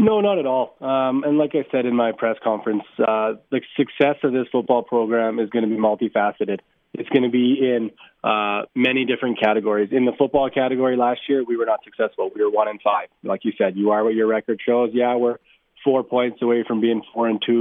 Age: 20-39